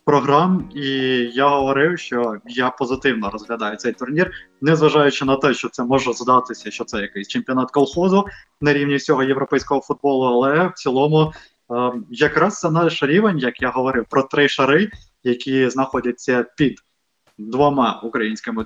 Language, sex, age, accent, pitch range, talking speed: Ukrainian, male, 20-39, native, 120-145 Hz, 150 wpm